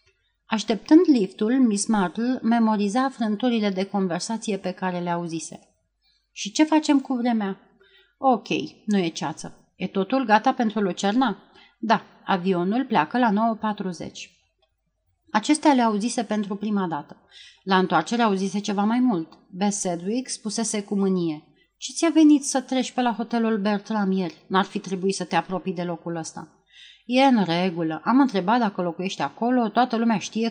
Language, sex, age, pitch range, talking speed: Romanian, female, 30-49, 185-245 Hz, 150 wpm